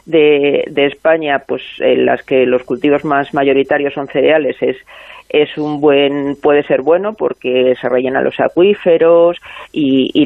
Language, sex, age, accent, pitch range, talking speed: Spanish, female, 40-59, Spanish, 140-165 Hz, 160 wpm